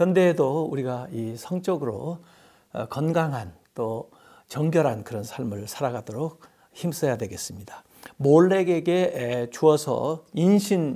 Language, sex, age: Korean, male, 60-79